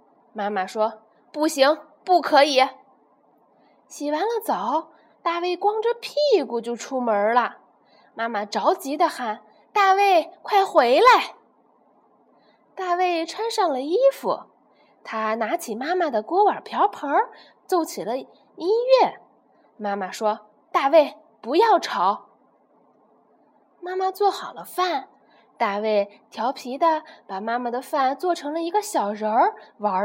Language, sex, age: Chinese, female, 20-39